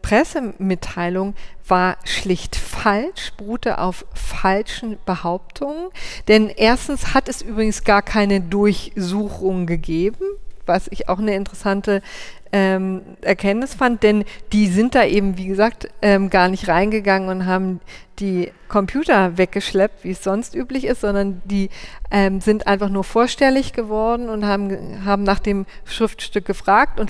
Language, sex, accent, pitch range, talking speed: German, female, German, 190-225 Hz, 135 wpm